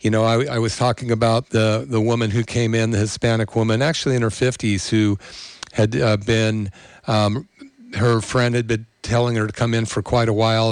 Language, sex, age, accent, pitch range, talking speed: English, male, 50-69, American, 110-130 Hz, 215 wpm